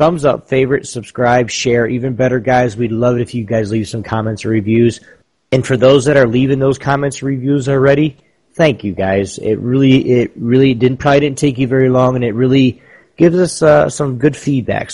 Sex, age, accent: male, 30-49, American